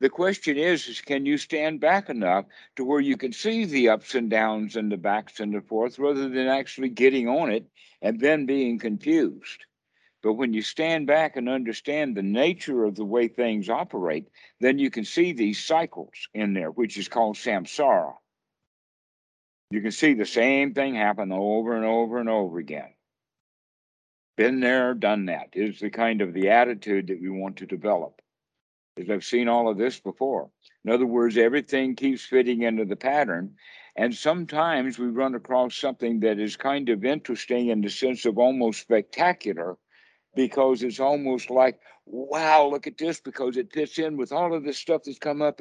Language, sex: English, male